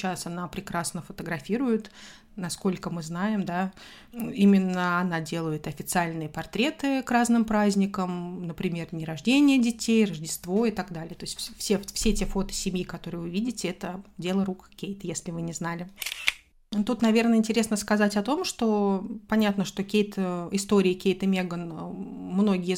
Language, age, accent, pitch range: Russian, 30-49, native, 175-215 Hz